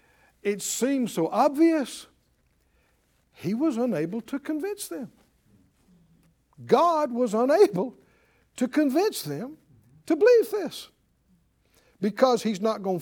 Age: 60-79